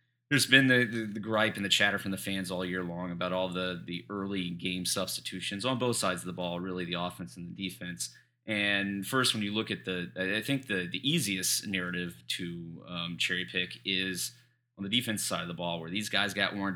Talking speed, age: 230 wpm, 30-49